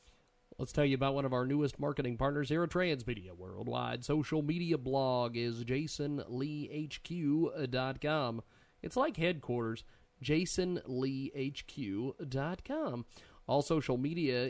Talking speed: 110 wpm